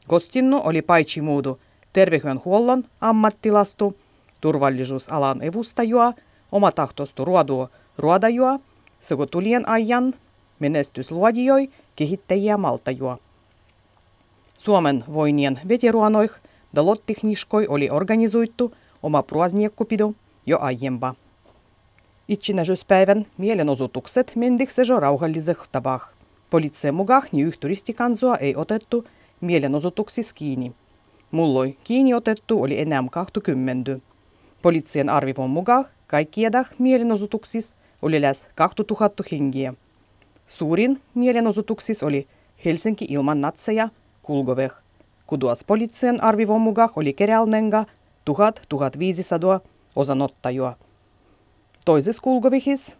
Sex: female